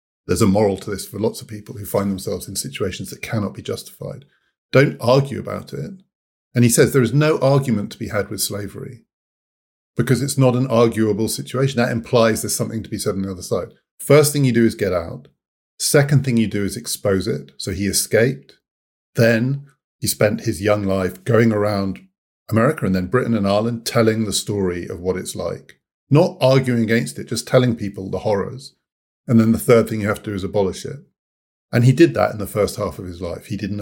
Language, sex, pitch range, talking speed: English, male, 100-130 Hz, 220 wpm